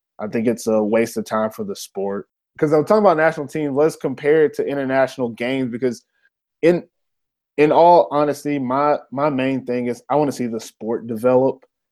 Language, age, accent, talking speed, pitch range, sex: English, 20-39, American, 195 wpm, 120-145 Hz, male